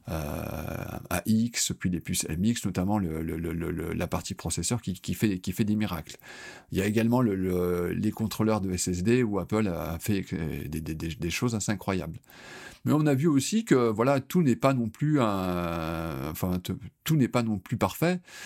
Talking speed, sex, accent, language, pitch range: 200 wpm, male, French, French, 90-115 Hz